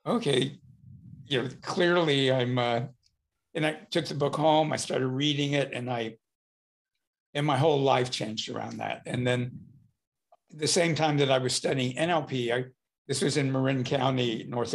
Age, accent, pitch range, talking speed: 60-79, American, 125-145 Hz, 170 wpm